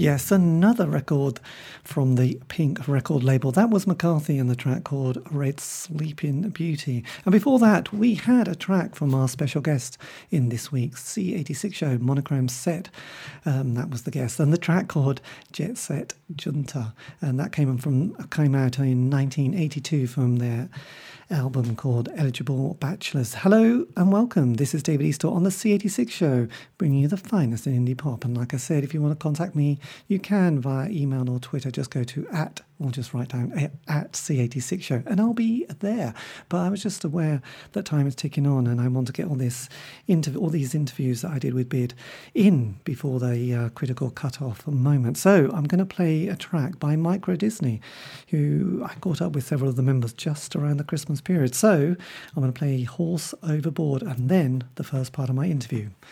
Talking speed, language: 200 wpm, English